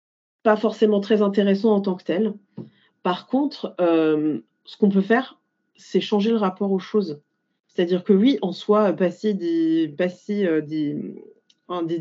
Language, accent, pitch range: French, French, 185-225 Hz